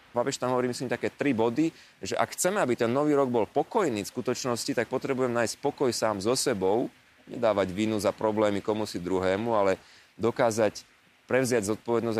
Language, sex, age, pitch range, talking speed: Slovak, male, 30-49, 110-140 Hz, 170 wpm